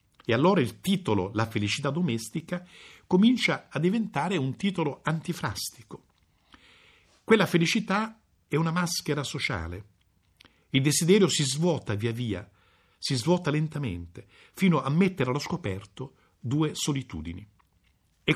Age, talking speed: 50-69, 120 wpm